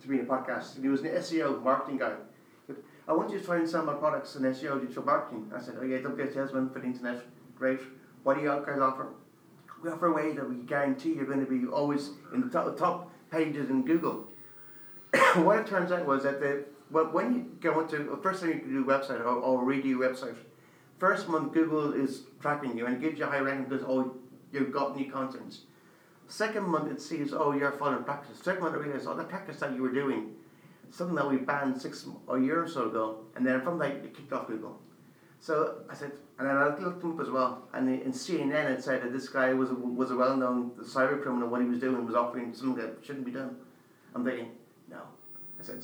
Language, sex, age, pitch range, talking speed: English, male, 40-59, 130-155 Hz, 240 wpm